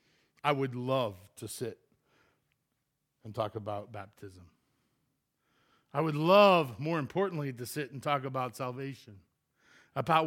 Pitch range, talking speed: 125-165 Hz, 125 wpm